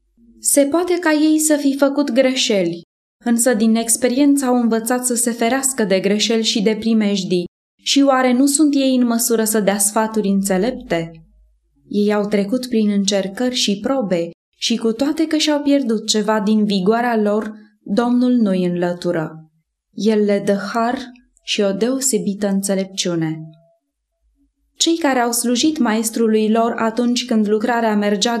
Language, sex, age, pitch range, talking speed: English, female, 20-39, 205-250 Hz, 150 wpm